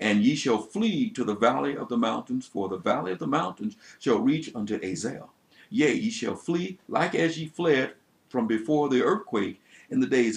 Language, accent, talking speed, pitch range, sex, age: English, American, 205 wpm, 120-190 Hz, male, 60-79